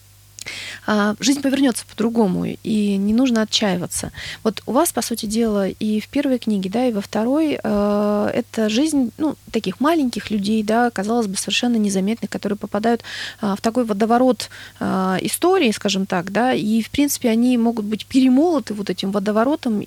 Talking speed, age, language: 155 wpm, 20-39, Russian